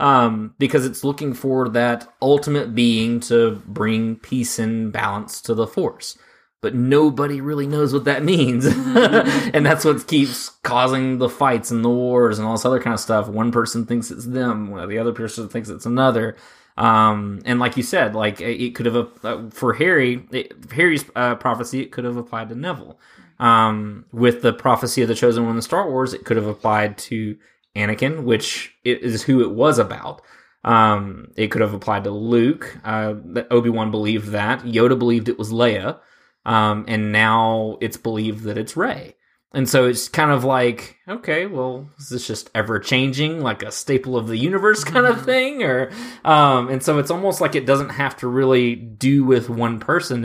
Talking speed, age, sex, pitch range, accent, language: 190 wpm, 20-39, male, 110-130 Hz, American, English